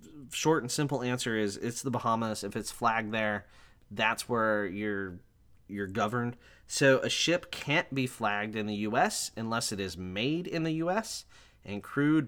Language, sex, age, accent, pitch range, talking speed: English, male, 20-39, American, 105-140 Hz, 170 wpm